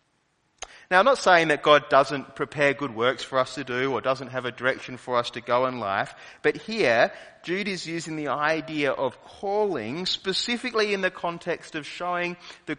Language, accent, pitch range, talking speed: English, Australian, 125-175 Hz, 190 wpm